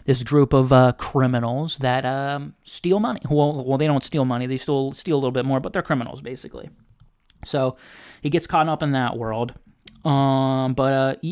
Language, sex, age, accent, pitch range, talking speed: English, male, 30-49, American, 125-145 Hz, 195 wpm